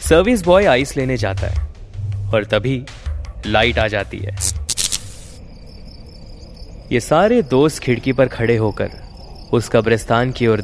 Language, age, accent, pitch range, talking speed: Hindi, 20-39, native, 85-120 Hz, 130 wpm